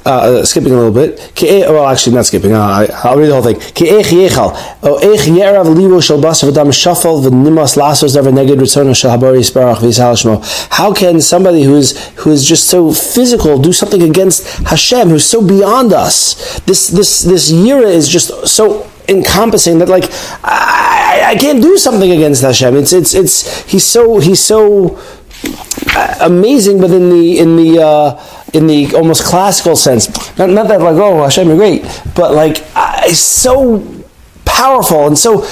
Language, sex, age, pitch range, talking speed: English, male, 30-49, 140-195 Hz, 140 wpm